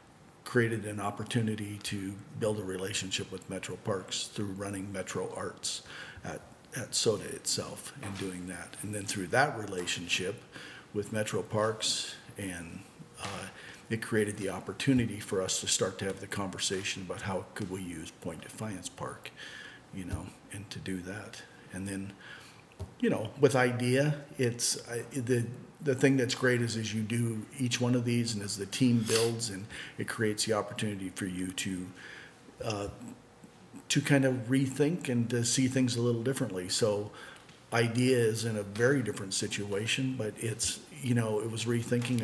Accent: American